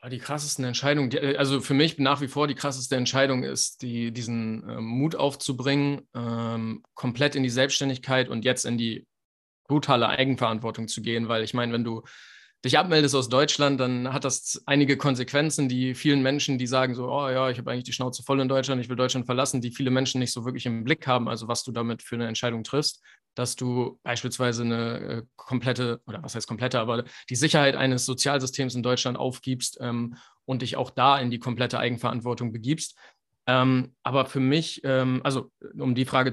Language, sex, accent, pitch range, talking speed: German, male, German, 120-140 Hz, 190 wpm